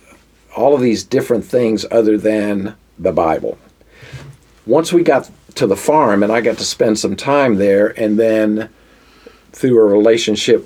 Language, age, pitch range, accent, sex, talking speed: English, 50-69, 105-130 Hz, American, male, 160 wpm